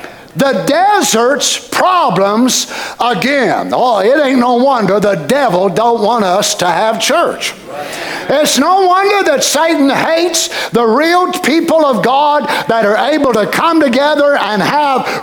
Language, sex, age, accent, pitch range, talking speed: English, male, 50-69, American, 230-310 Hz, 140 wpm